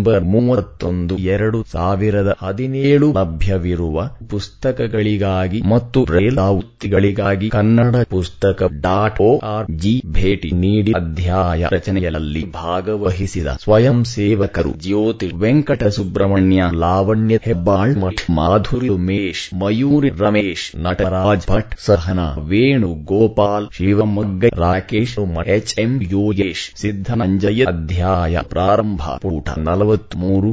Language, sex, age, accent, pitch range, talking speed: English, male, 30-49, Indian, 90-110 Hz, 80 wpm